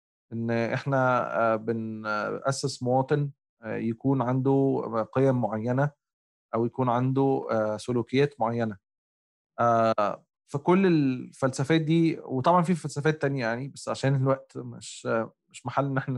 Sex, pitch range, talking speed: male, 115-150 Hz, 100 wpm